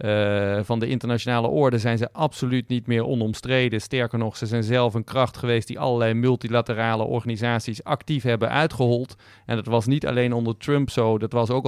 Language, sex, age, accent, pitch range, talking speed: Dutch, male, 40-59, Dutch, 115-135 Hz, 190 wpm